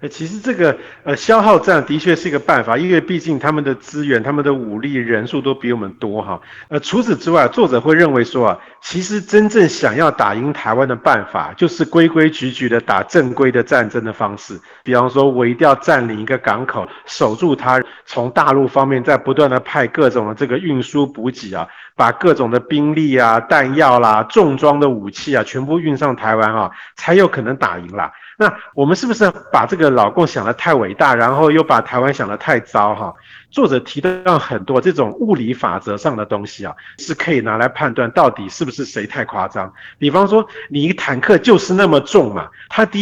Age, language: 50-69, Chinese